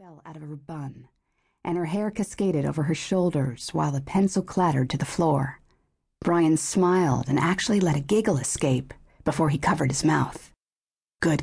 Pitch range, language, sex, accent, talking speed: 145-185 Hz, English, female, American, 170 wpm